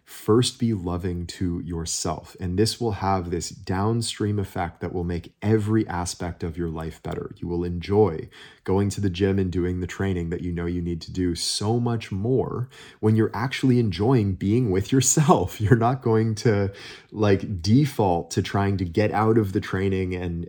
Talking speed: 185 wpm